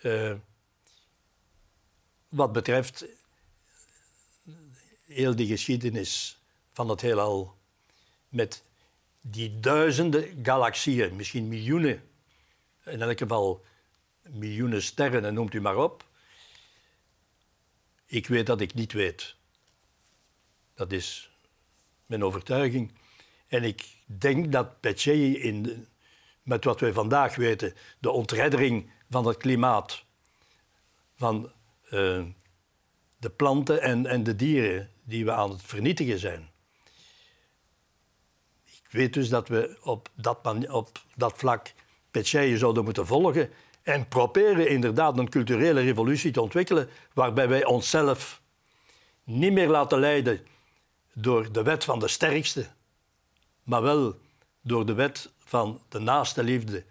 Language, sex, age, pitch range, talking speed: Dutch, male, 60-79, 105-135 Hz, 115 wpm